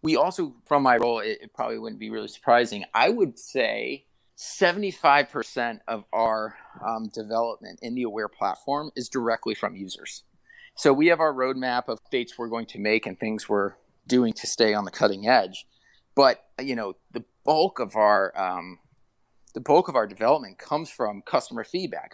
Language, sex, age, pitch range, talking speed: English, male, 30-49, 110-140 Hz, 180 wpm